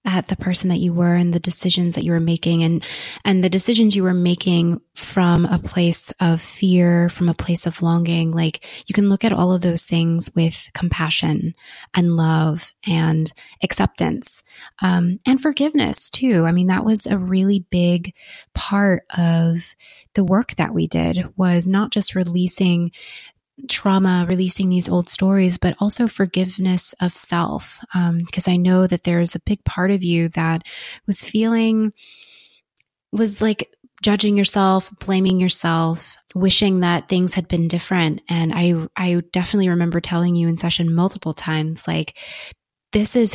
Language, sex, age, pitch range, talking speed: English, female, 20-39, 170-190 Hz, 160 wpm